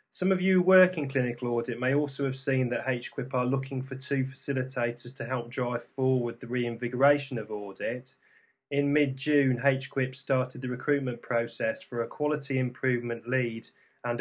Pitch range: 120-140 Hz